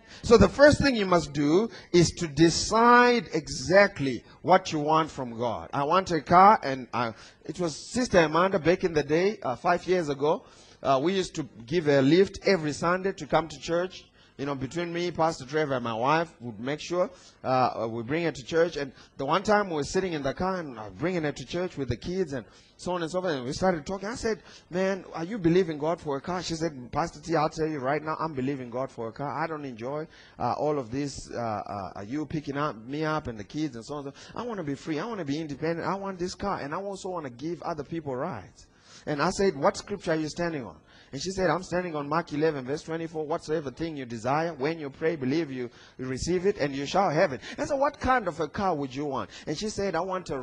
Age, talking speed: 30-49, 255 wpm